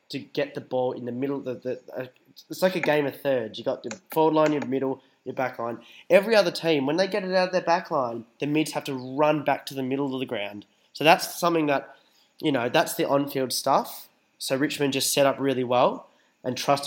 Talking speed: 250 wpm